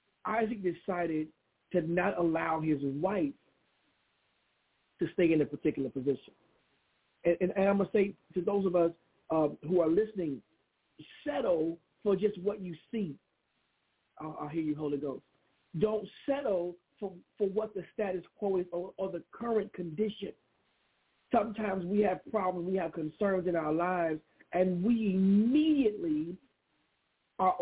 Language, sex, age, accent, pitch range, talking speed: English, male, 50-69, American, 175-220 Hz, 150 wpm